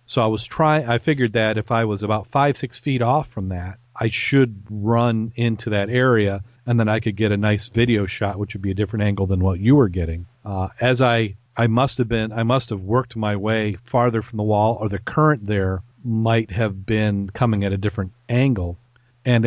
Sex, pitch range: male, 100-120 Hz